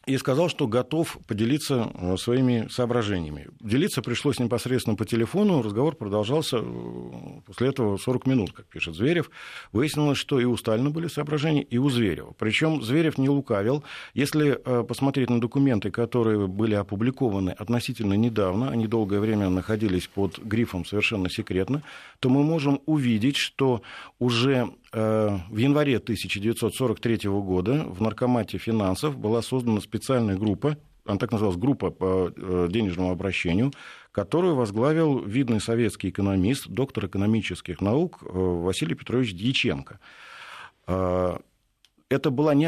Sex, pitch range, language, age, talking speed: male, 105-135 Hz, Russian, 50-69, 130 wpm